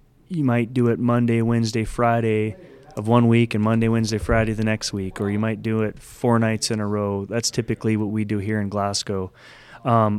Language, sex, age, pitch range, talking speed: English, male, 20-39, 105-125 Hz, 210 wpm